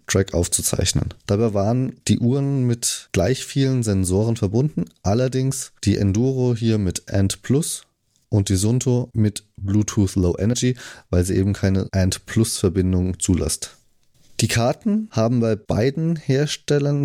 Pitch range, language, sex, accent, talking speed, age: 100-130 Hz, German, male, German, 135 wpm, 30-49